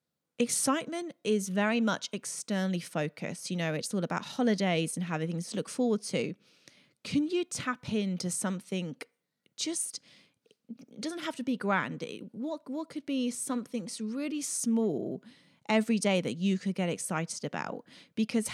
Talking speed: 150 wpm